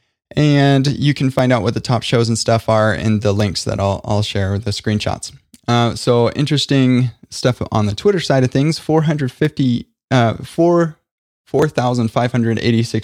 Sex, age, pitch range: male, 20-39, 110-130 Hz